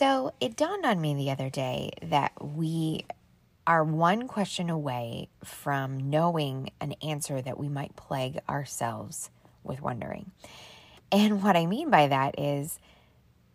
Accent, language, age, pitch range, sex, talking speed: American, English, 20-39, 145-200 Hz, female, 140 wpm